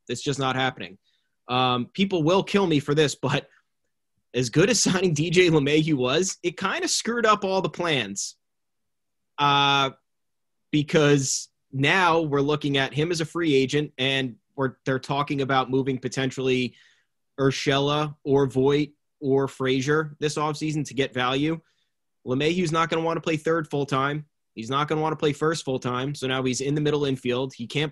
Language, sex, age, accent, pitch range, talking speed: English, male, 20-39, American, 125-150 Hz, 180 wpm